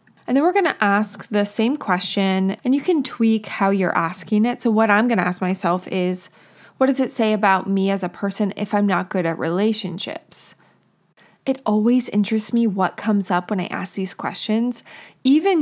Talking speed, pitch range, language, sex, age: 205 wpm, 195-235 Hz, English, female, 20-39